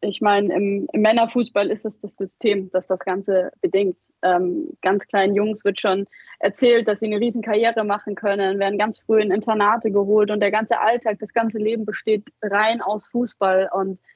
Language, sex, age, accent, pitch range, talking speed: German, female, 20-39, German, 195-230 Hz, 190 wpm